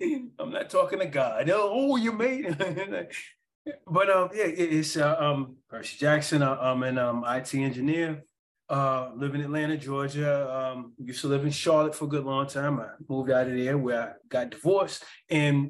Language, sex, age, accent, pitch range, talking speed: English, male, 30-49, American, 130-155 Hz, 185 wpm